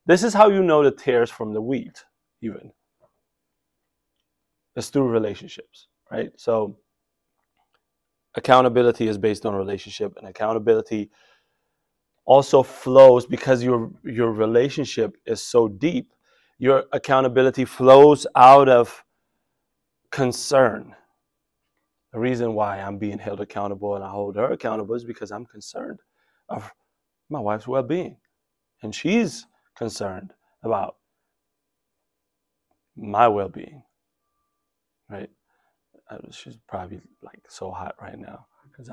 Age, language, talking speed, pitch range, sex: 30-49, English, 115 wpm, 110-145 Hz, male